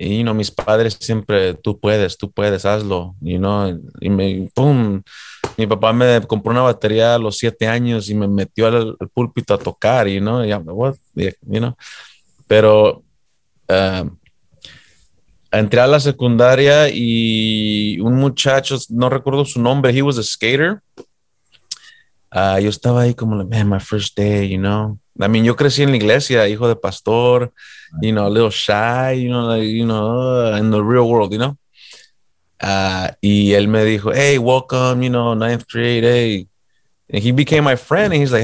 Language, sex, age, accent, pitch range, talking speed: Spanish, male, 20-39, Mexican, 105-135 Hz, 180 wpm